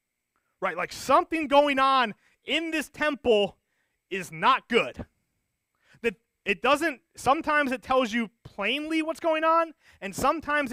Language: English